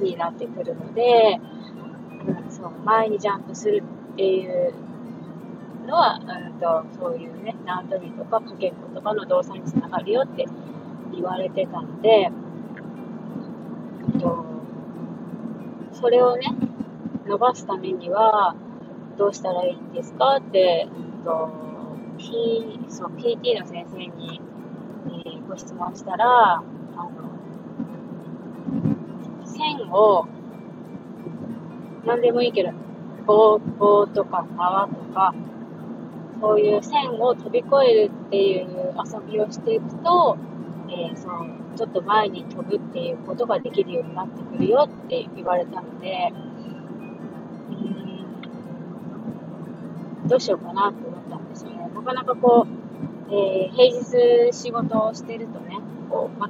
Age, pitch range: 20-39, 200-245 Hz